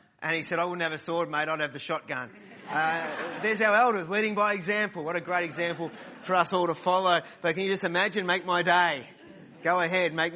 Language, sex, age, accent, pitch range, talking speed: English, male, 30-49, Australian, 150-195 Hz, 230 wpm